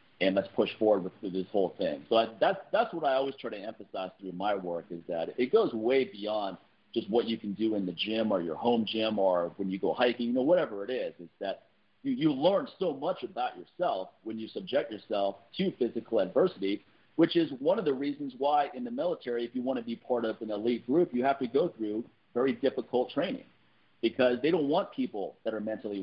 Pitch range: 105-130 Hz